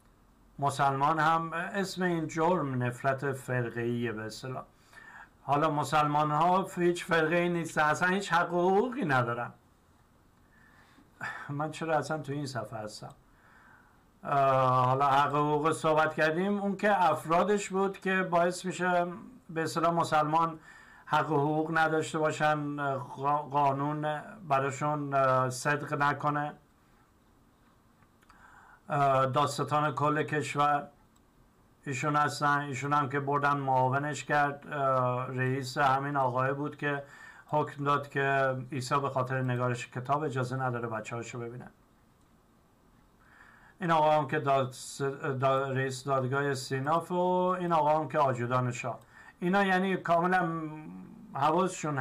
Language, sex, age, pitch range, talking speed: Persian, male, 50-69, 135-160 Hz, 115 wpm